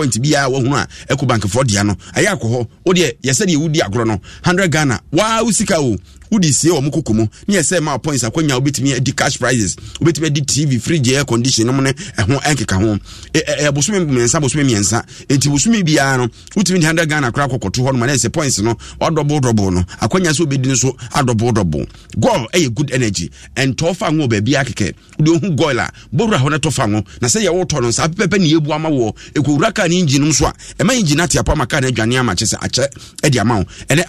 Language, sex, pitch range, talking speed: English, male, 115-160 Hz, 210 wpm